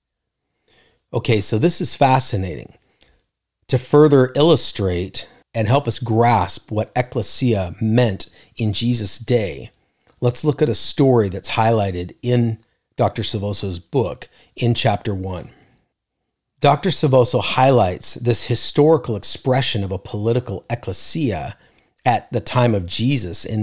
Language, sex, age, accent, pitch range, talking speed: English, male, 40-59, American, 100-130 Hz, 120 wpm